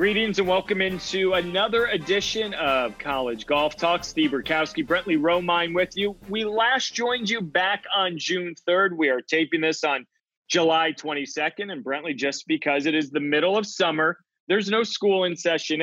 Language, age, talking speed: English, 30-49, 175 wpm